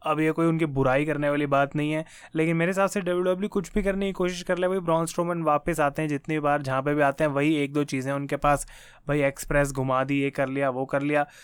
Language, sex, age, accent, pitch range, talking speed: Hindi, male, 20-39, native, 145-180 Hz, 270 wpm